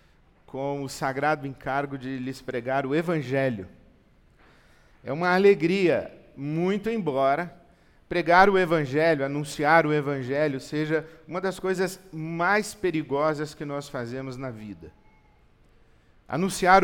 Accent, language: Brazilian, Portuguese